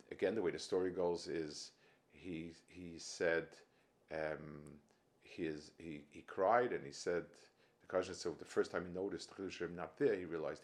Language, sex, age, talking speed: English, male, 50-69, 165 wpm